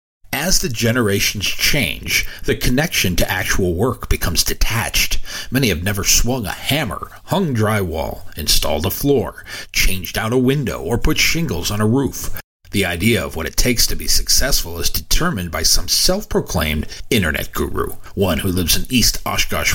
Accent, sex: American, male